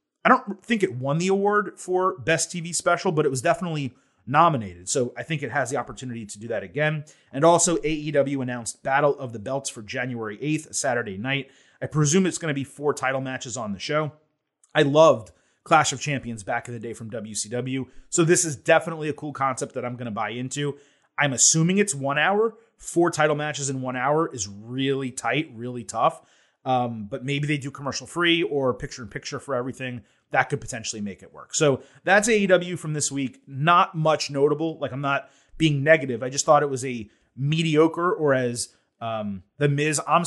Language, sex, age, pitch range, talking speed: English, male, 30-49, 130-160 Hz, 205 wpm